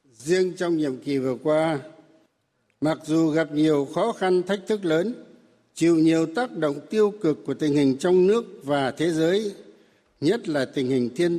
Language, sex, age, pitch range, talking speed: Vietnamese, male, 60-79, 140-185 Hz, 180 wpm